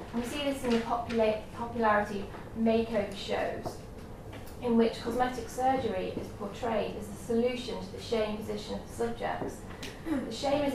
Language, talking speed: English, 160 wpm